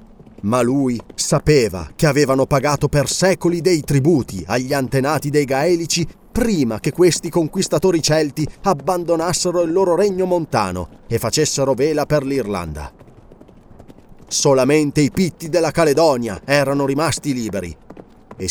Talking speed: 125 wpm